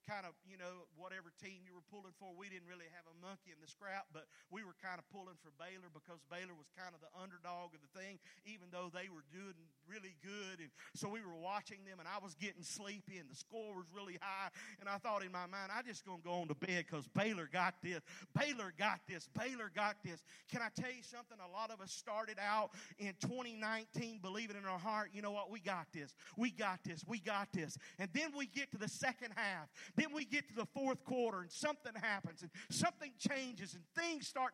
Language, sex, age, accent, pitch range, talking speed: English, male, 40-59, American, 180-235 Hz, 240 wpm